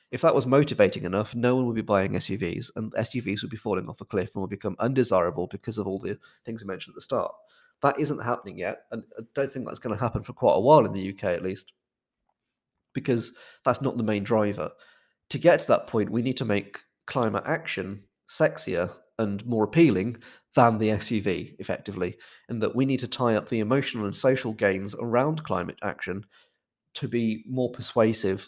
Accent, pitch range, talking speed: British, 100-125 Hz, 205 wpm